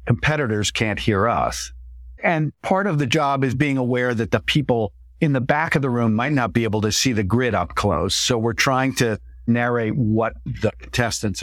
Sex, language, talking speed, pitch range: male, English, 205 wpm, 95-125 Hz